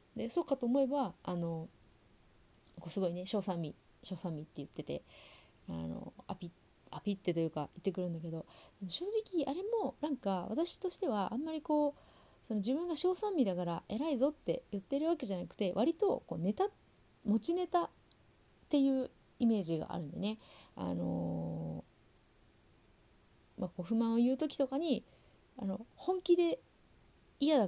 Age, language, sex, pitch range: 30-49, Japanese, female, 170-260 Hz